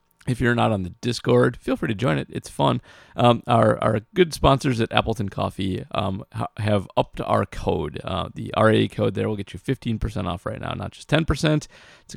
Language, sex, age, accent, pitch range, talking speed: English, male, 30-49, American, 95-120 Hz, 220 wpm